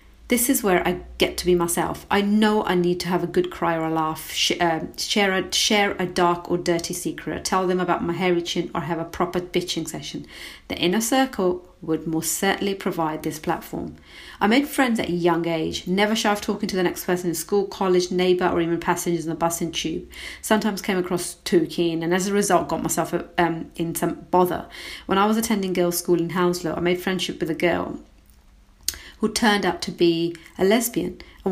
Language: English